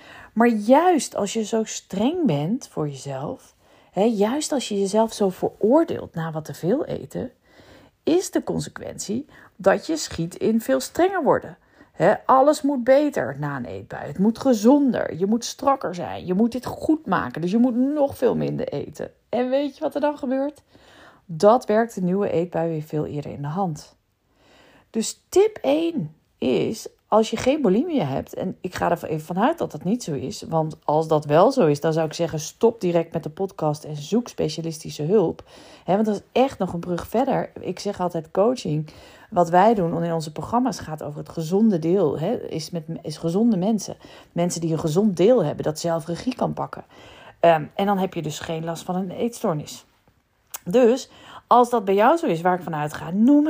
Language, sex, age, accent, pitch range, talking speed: Dutch, female, 40-59, Dutch, 165-255 Hz, 195 wpm